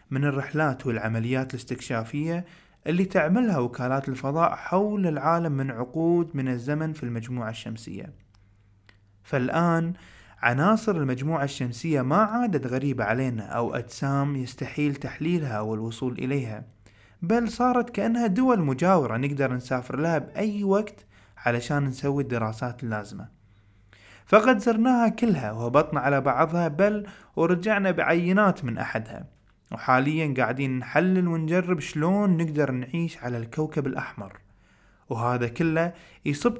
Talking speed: 115 wpm